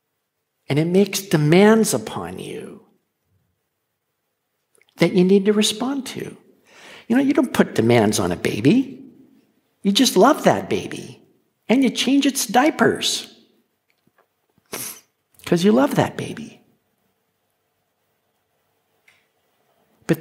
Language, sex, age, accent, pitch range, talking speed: English, male, 60-79, American, 125-205 Hz, 110 wpm